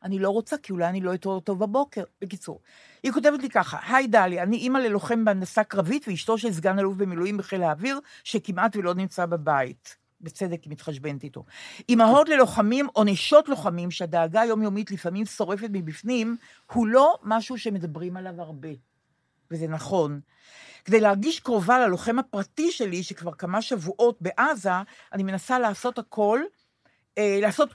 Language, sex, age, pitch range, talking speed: Hebrew, female, 50-69, 180-235 Hz, 145 wpm